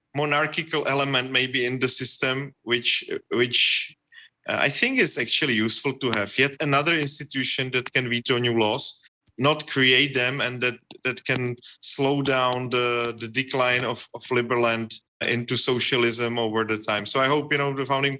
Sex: male